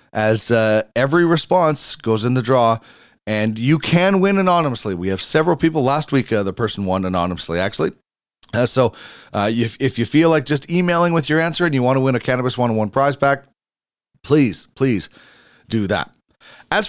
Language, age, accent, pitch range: English, 30-49, American, 110-155 Hz